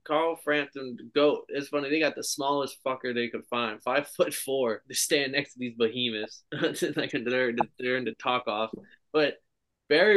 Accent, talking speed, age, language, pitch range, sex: American, 185 wpm, 20-39, English, 120-140 Hz, male